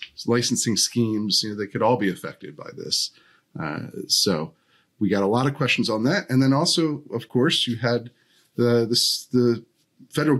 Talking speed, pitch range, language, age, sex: 175 wpm, 105-135 Hz, English, 30-49, male